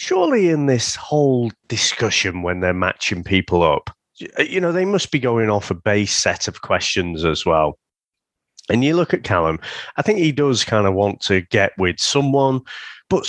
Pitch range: 110-165 Hz